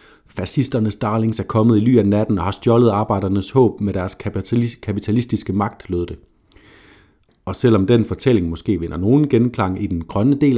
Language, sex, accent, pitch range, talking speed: Danish, male, native, 95-115 Hz, 180 wpm